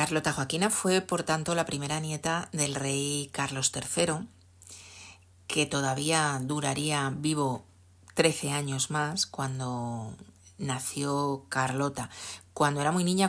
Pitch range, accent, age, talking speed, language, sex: 135-165 Hz, Spanish, 40-59, 115 wpm, Spanish, female